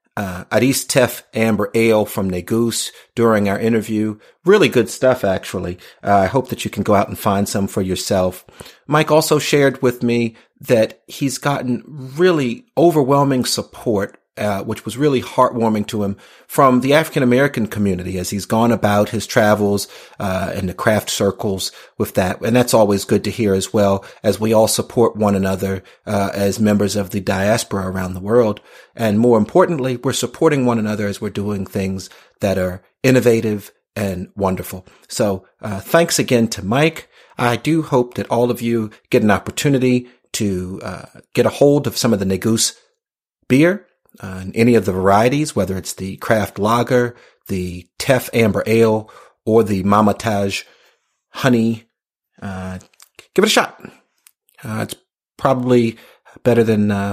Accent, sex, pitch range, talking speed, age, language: American, male, 100-125 Hz, 165 wpm, 40-59, English